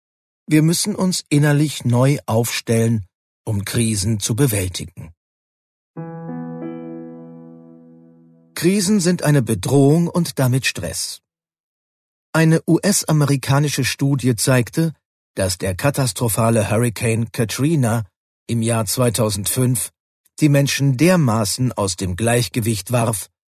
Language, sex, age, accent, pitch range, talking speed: German, male, 50-69, German, 100-140 Hz, 90 wpm